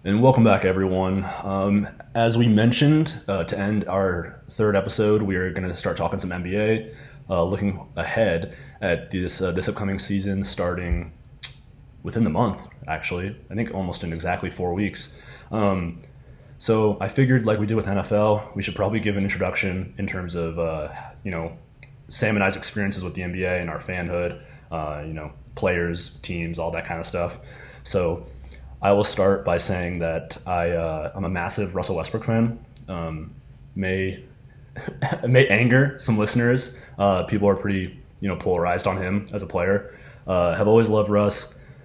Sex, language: male, English